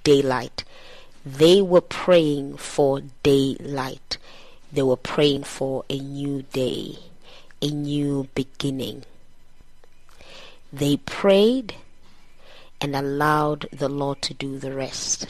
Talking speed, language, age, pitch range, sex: 100 wpm, English, 20-39, 135-150 Hz, female